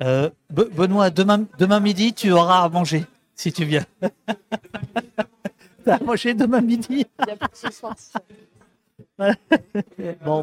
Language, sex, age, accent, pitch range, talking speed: French, male, 50-69, French, 120-170 Hz, 120 wpm